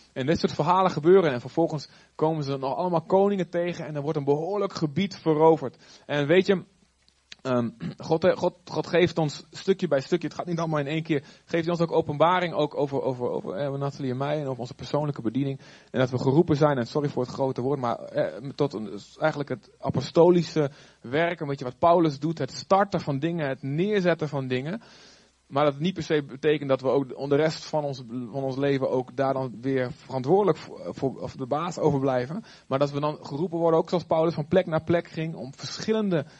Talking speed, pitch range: 220 wpm, 140-180 Hz